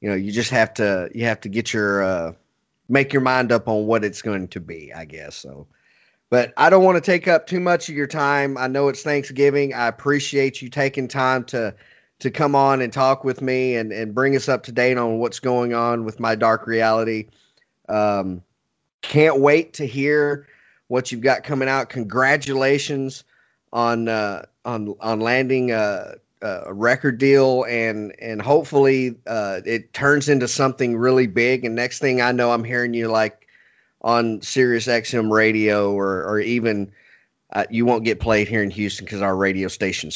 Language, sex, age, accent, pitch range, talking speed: English, male, 30-49, American, 110-135 Hz, 190 wpm